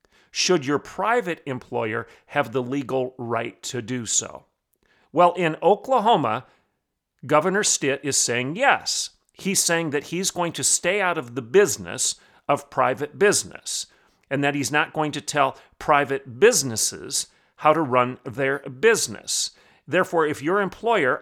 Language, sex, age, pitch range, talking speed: English, male, 40-59, 130-160 Hz, 145 wpm